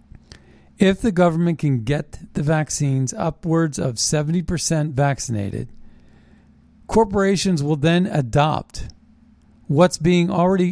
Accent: American